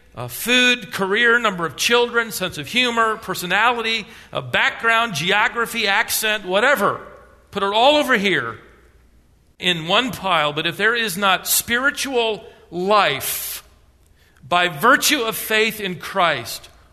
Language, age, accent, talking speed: English, 50-69, American, 130 wpm